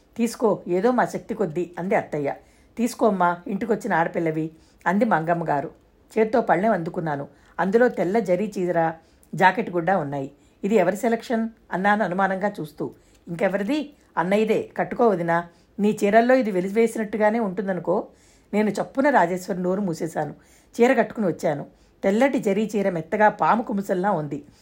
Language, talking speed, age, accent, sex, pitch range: Telugu, 130 wpm, 50-69, native, female, 175-225 Hz